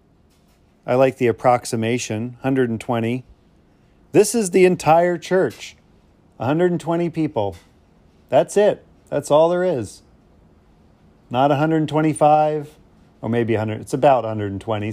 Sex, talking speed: male, 105 wpm